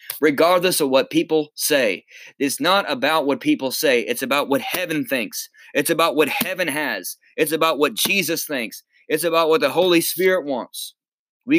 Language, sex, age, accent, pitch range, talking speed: English, male, 20-39, American, 150-205 Hz, 175 wpm